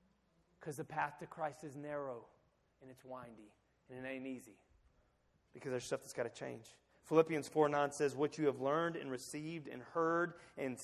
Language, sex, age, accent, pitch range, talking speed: English, male, 30-49, American, 130-170 Hz, 190 wpm